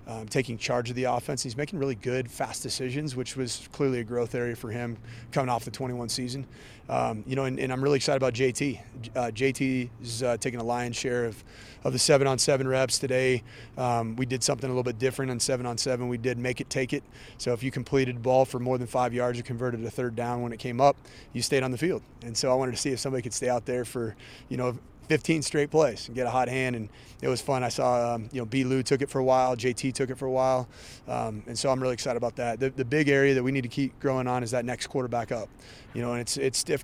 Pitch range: 120-135 Hz